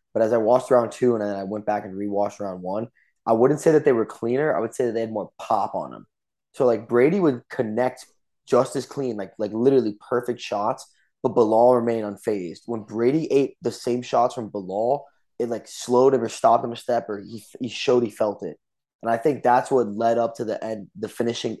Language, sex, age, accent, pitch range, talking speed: English, male, 20-39, American, 110-130 Hz, 240 wpm